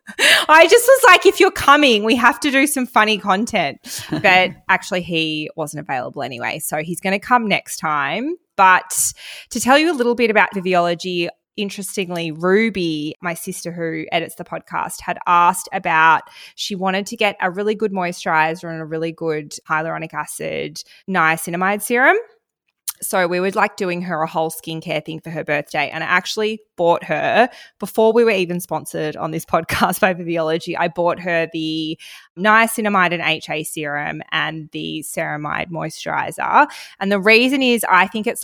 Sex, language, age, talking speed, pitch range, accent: female, English, 20-39, 170 wpm, 165-215 Hz, Australian